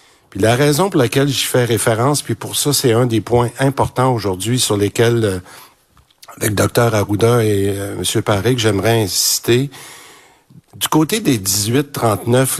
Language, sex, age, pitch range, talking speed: French, male, 50-69, 105-130 Hz, 150 wpm